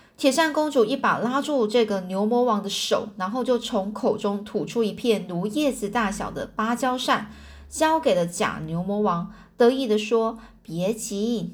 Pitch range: 200-270 Hz